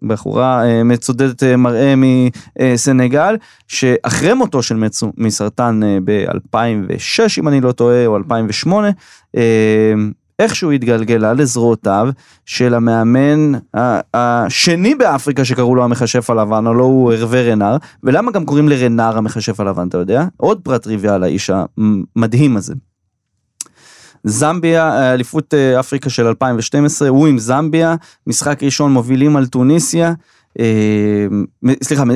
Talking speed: 110 wpm